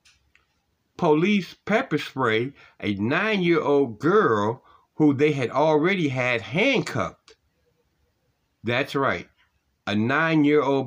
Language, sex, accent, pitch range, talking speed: English, male, American, 105-135 Hz, 90 wpm